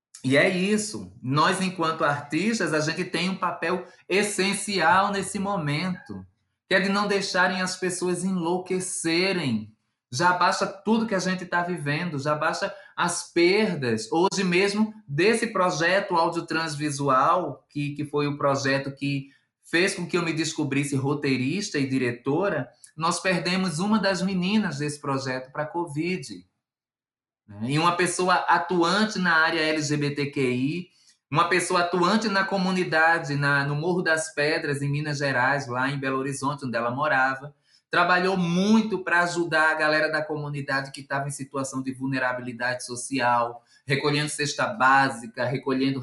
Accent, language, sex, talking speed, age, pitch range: Brazilian, Portuguese, male, 145 wpm, 20-39, 135-180 Hz